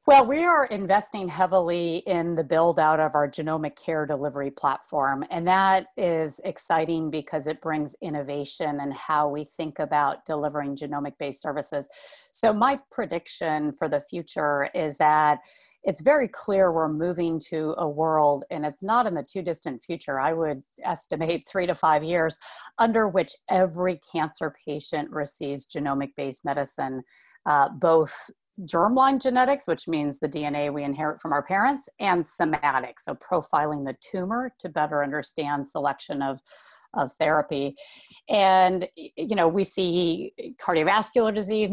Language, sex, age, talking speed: English, female, 30-49, 145 wpm